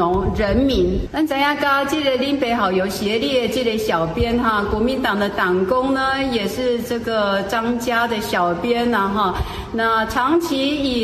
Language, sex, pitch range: Chinese, female, 220-310 Hz